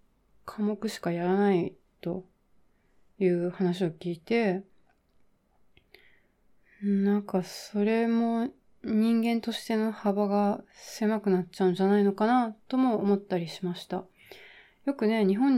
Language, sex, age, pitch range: Japanese, female, 30-49, 185-225 Hz